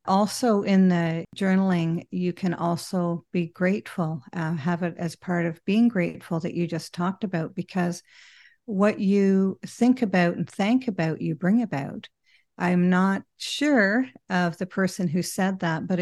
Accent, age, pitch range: American, 50-69, 175-230 Hz